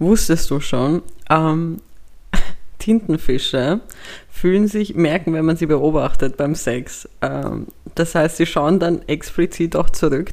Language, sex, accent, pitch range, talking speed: German, female, German, 155-210 Hz, 135 wpm